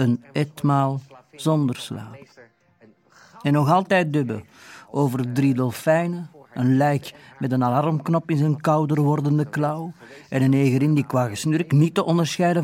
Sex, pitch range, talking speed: male, 115-145 Hz, 140 wpm